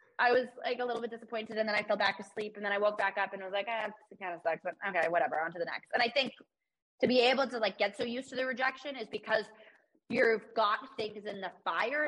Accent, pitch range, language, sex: American, 195-240 Hz, English, female